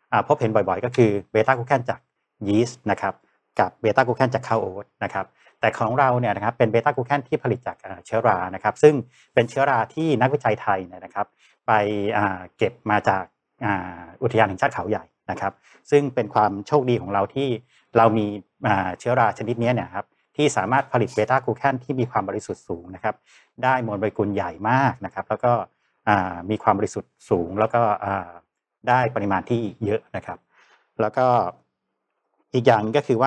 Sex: male